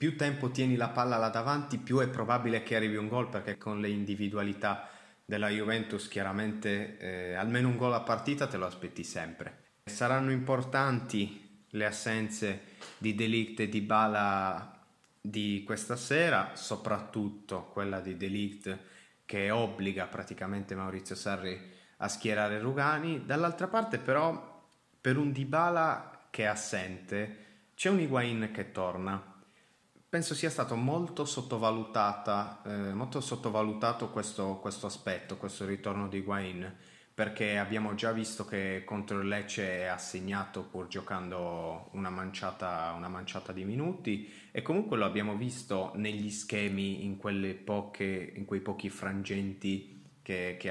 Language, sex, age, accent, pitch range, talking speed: Italian, male, 30-49, native, 95-115 Hz, 140 wpm